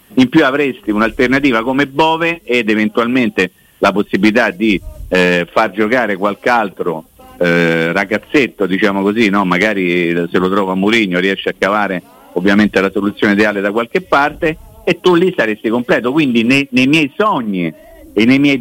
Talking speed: 160 wpm